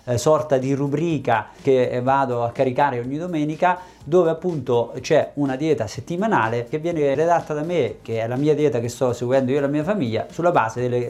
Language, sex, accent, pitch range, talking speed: Italian, male, native, 120-170 Hz, 195 wpm